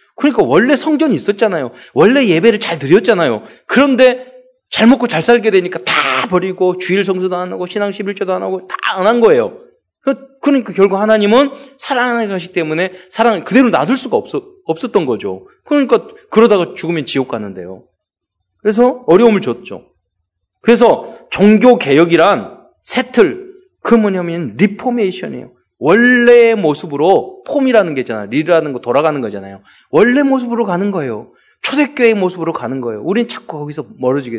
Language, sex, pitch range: Korean, male, 160-240 Hz